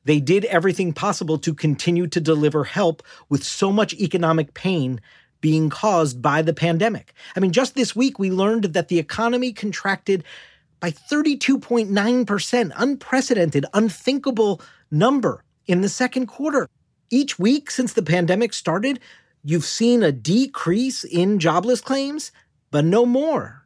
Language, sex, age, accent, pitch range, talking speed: English, male, 40-59, American, 155-225 Hz, 140 wpm